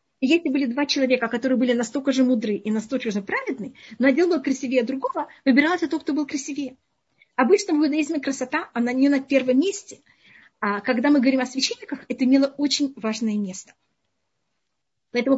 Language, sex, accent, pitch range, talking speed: Russian, female, native, 230-285 Hz, 175 wpm